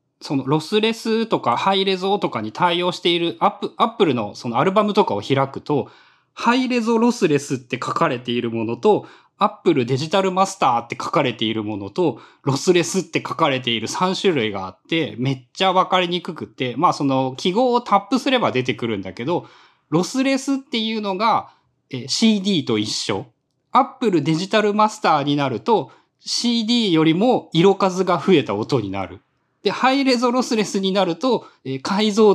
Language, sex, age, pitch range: Japanese, male, 20-39, 130-220 Hz